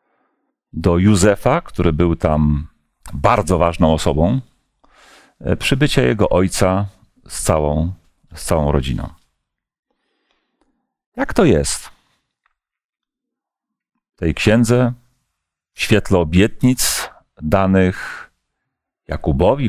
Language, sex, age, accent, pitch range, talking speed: Polish, male, 40-59, native, 75-105 Hz, 75 wpm